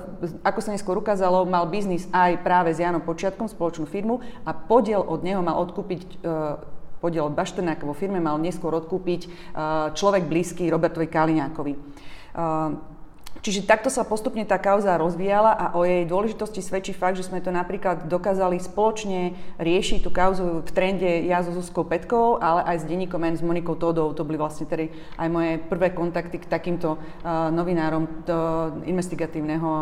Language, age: Slovak, 30-49